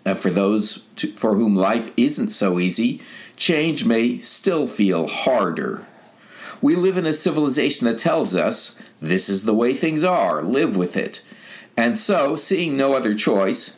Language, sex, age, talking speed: English, male, 50-69, 160 wpm